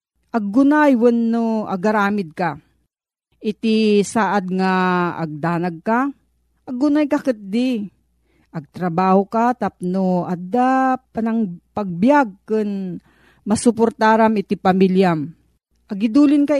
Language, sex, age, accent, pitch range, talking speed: Filipino, female, 40-59, native, 185-240 Hz, 85 wpm